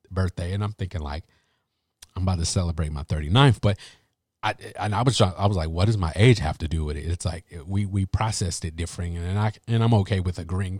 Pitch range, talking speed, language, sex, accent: 90-110 Hz, 235 wpm, English, male, American